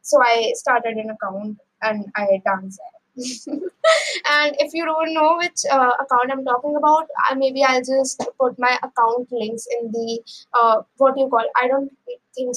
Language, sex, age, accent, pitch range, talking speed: English, female, 20-39, Indian, 230-295 Hz, 170 wpm